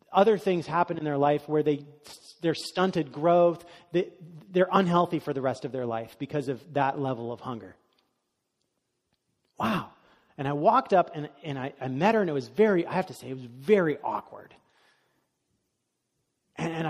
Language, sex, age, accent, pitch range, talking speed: English, male, 30-49, American, 135-185 Hz, 175 wpm